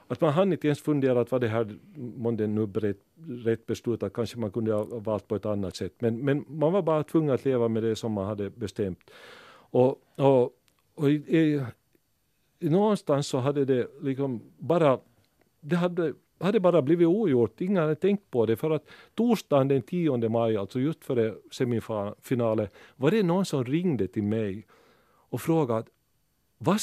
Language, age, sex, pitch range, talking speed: Finnish, 50-69, male, 120-165 Hz, 180 wpm